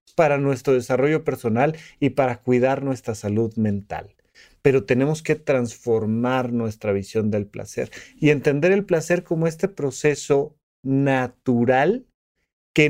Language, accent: Spanish, Mexican